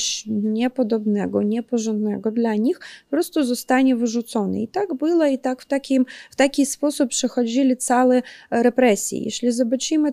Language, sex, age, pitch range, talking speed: Polish, female, 20-39, 215-250 Hz, 135 wpm